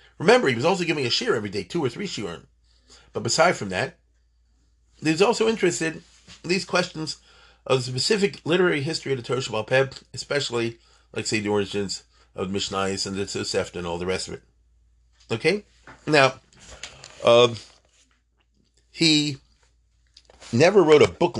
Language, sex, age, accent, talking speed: English, male, 40-59, American, 155 wpm